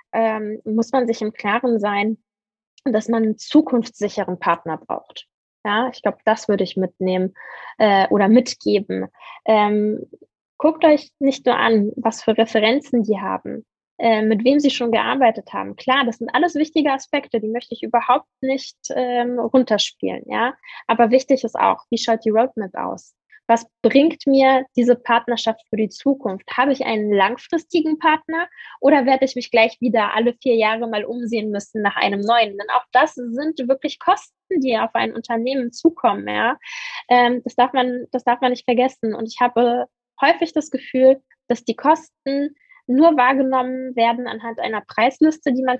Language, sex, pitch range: German, female, 220-265 Hz